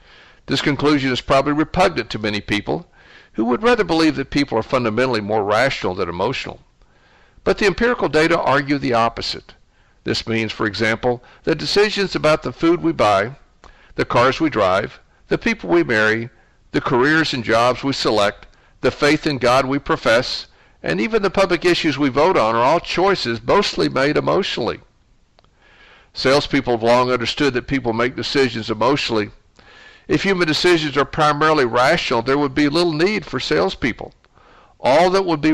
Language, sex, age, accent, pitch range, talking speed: English, male, 60-79, American, 120-160 Hz, 165 wpm